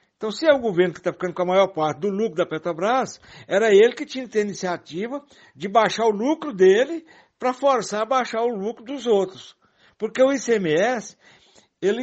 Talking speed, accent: 205 wpm, Brazilian